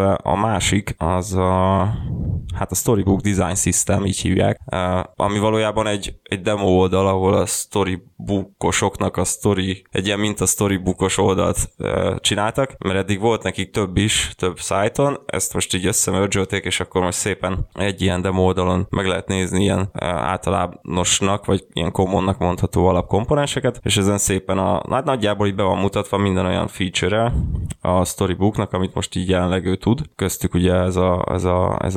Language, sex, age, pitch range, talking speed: Hungarian, male, 20-39, 95-105 Hz, 170 wpm